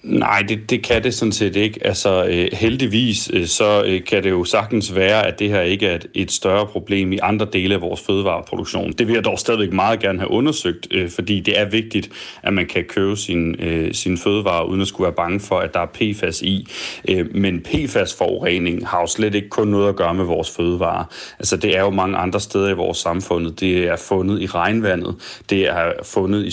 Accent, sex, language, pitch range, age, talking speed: native, male, Danish, 90-105 Hz, 30-49, 215 wpm